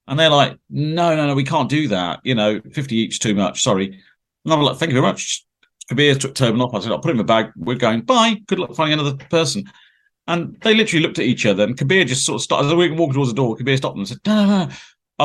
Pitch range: 115-145 Hz